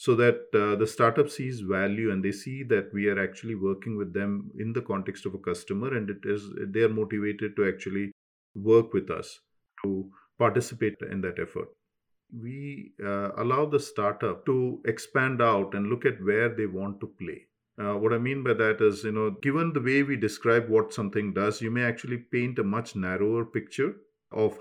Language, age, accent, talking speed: English, 50-69, Indian, 200 wpm